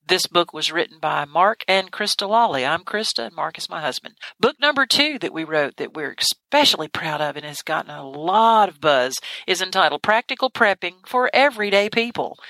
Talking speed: 195 wpm